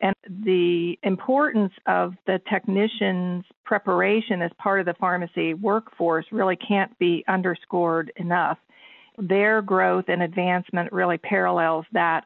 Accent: American